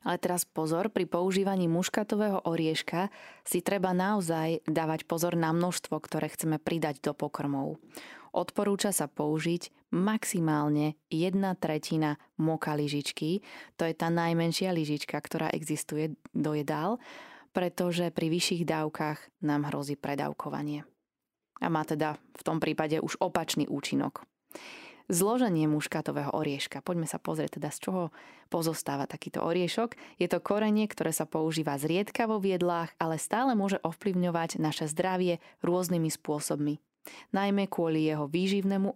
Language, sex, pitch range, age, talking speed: Slovak, female, 155-195 Hz, 20-39, 130 wpm